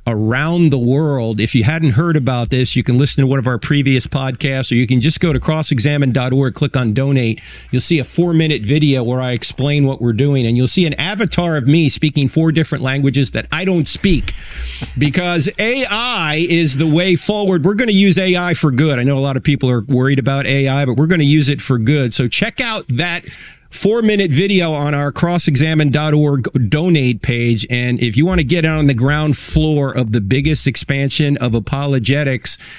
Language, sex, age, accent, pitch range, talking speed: English, male, 40-59, American, 125-160 Hz, 205 wpm